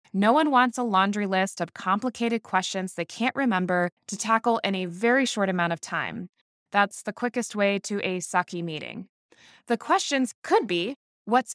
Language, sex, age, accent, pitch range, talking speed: English, female, 20-39, American, 185-250 Hz, 175 wpm